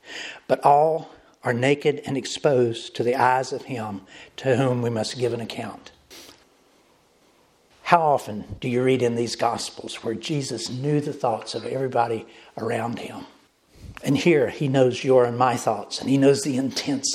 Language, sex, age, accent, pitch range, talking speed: English, male, 60-79, American, 120-140 Hz, 170 wpm